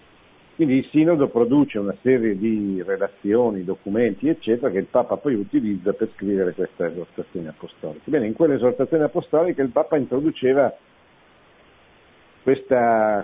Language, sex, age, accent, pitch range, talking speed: Italian, male, 50-69, native, 105-135 Hz, 130 wpm